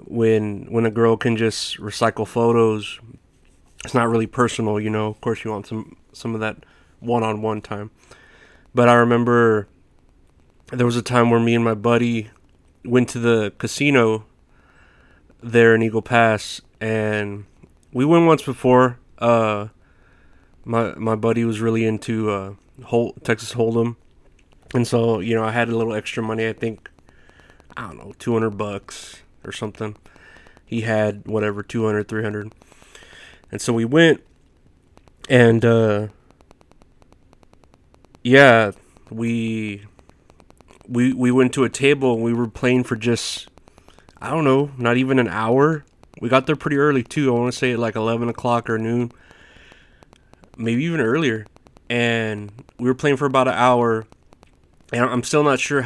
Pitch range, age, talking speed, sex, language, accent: 105-120 Hz, 20-39, 150 wpm, male, English, American